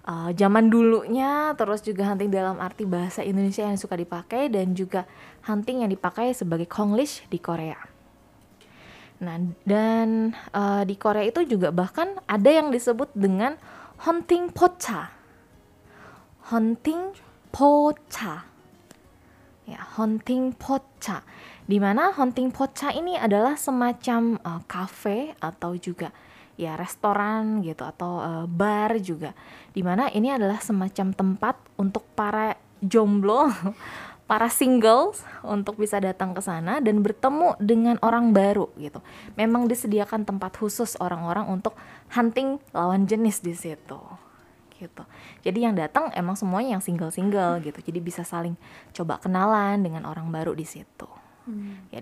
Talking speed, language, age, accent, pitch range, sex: 125 wpm, Indonesian, 20-39, native, 185-235 Hz, female